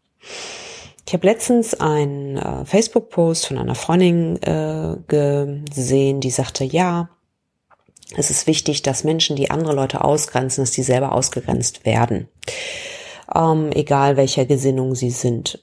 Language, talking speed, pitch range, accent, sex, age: German, 130 wpm, 130-170 Hz, German, female, 30-49